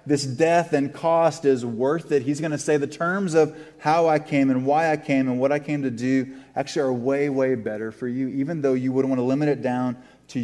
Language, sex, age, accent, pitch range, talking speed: English, male, 30-49, American, 125-150 Hz, 255 wpm